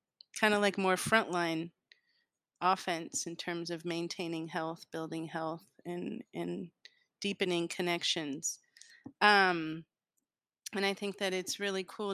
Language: English